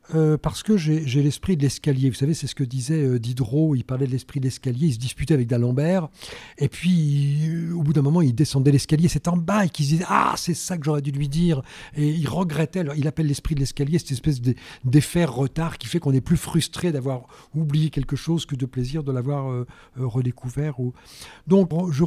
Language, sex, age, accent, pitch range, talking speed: French, male, 50-69, French, 125-160 Hz, 220 wpm